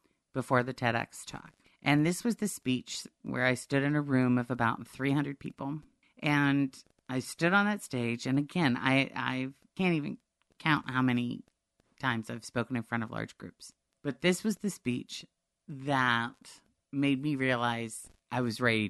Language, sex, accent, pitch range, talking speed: English, female, American, 125-170 Hz, 170 wpm